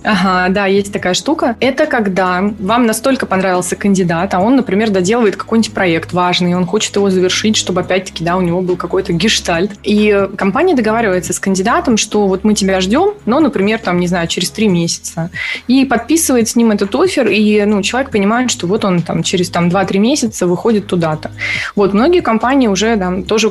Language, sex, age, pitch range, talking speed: Russian, female, 20-39, 185-225 Hz, 190 wpm